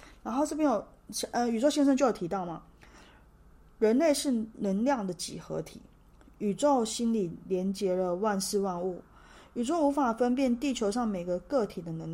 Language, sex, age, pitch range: Chinese, female, 20-39, 185-255 Hz